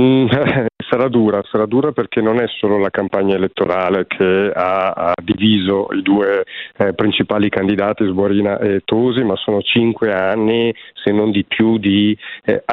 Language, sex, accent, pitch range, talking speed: Italian, male, native, 100-115 Hz, 155 wpm